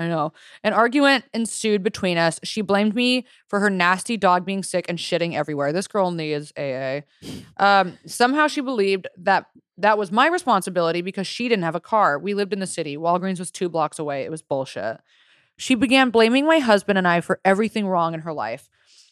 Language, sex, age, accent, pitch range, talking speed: English, female, 20-39, American, 165-210 Hz, 200 wpm